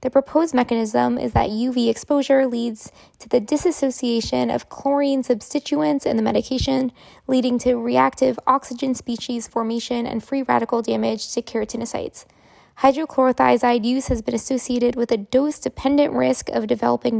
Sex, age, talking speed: female, 20-39, 140 wpm